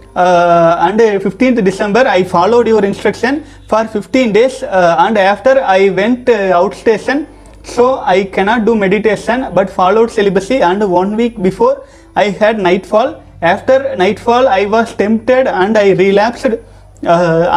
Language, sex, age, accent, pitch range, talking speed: Tamil, male, 30-49, native, 185-235 Hz, 145 wpm